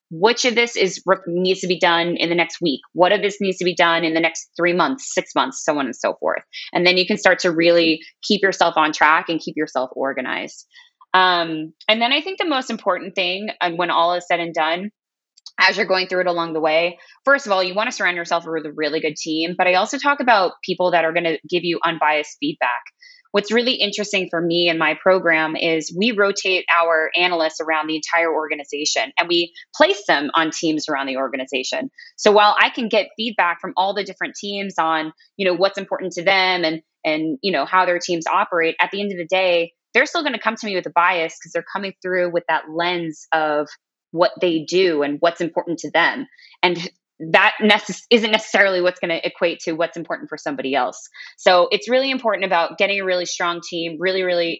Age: 20-39